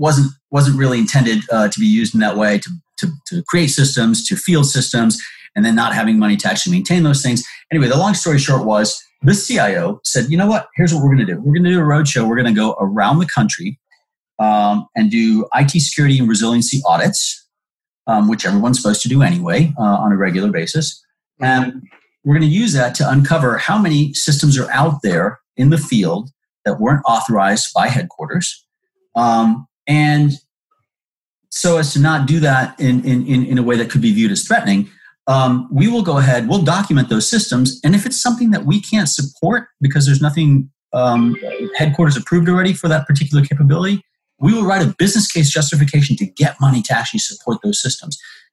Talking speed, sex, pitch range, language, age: 205 wpm, male, 130-185 Hz, English, 30-49